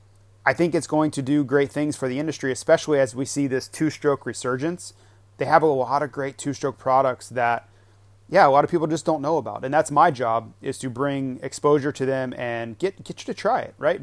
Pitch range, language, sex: 115-145 Hz, English, male